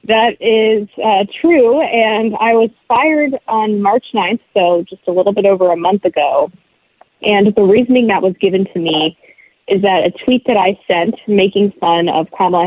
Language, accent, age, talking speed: English, American, 20-39, 185 wpm